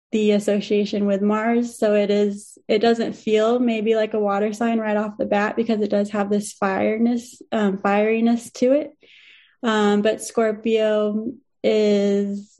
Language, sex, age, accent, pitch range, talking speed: English, female, 20-39, American, 205-225 Hz, 155 wpm